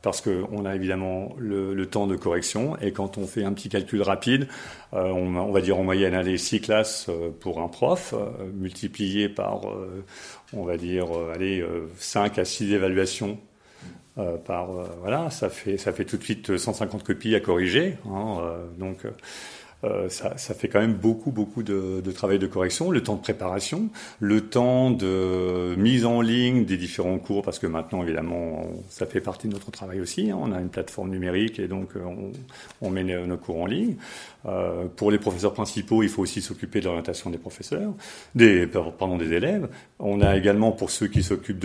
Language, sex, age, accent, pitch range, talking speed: French, male, 40-59, French, 95-105 Hz, 200 wpm